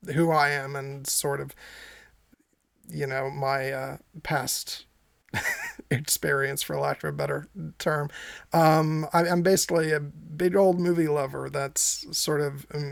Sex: male